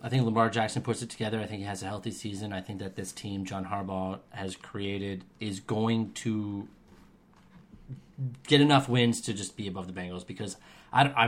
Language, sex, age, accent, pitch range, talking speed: English, male, 30-49, American, 100-120 Hz, 200 wpm